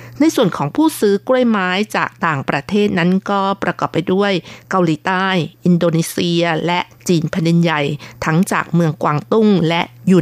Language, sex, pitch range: Thai, female, 165-210 Hz